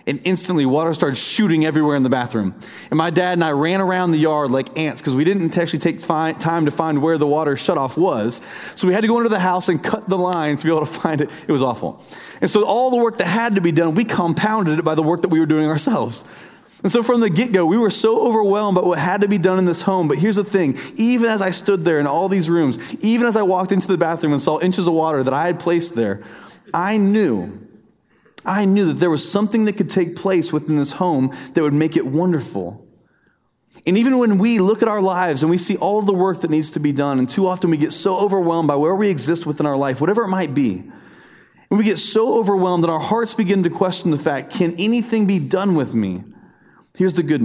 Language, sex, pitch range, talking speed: English, male, 155-205 Hz, 255 wpm